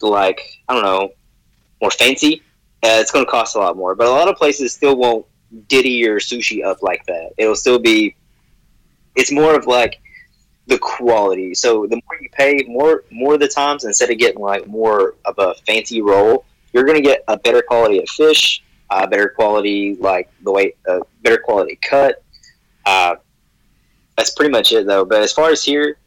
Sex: male